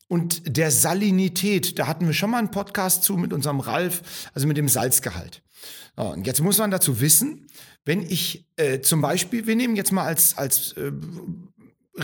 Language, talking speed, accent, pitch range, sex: German, 180 wpm, German, 145-200 Hz, male